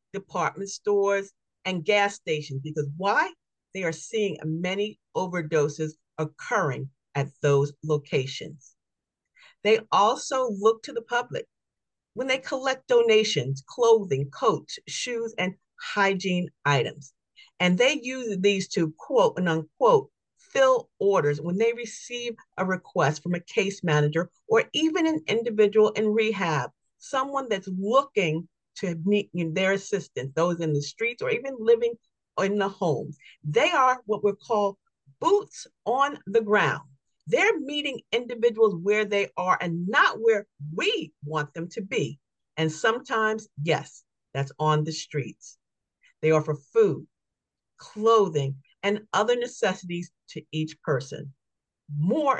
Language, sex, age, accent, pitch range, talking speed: English, female, 40-59, American, 155-225 Hz, 130 wpm